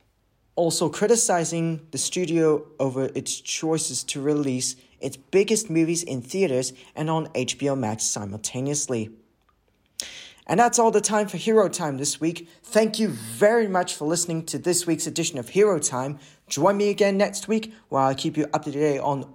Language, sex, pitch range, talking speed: English, male, 140-185 Hz, 170 wpm